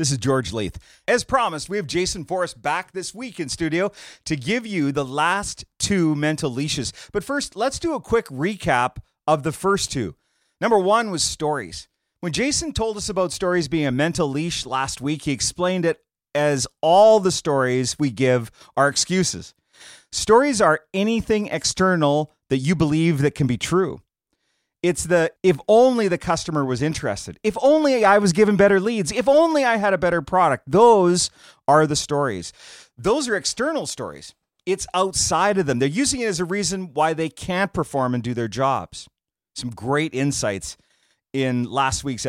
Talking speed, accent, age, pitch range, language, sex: 180 wpm, American, 40-59, 140-195 Hz, English, male